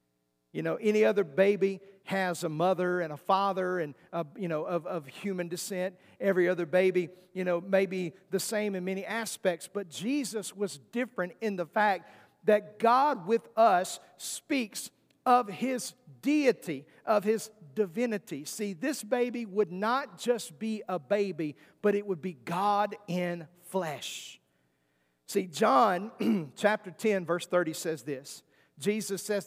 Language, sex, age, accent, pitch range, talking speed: English, male, 50-69, American, 170-210 Hz, 155 wpm